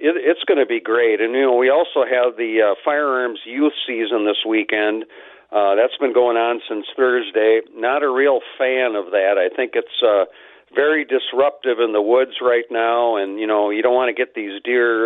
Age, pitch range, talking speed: 50-69, 110-140 Hz, 205 wpm